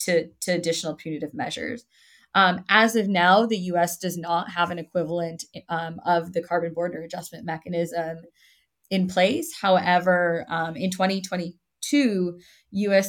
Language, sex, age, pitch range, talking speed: English, female, 20-39, 165-205 Hz, 140 wpm